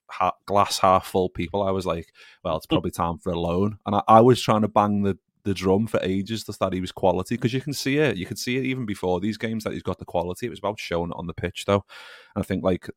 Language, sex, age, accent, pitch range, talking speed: English, male, 30-49, British, 85-100 Hz, 275 wpm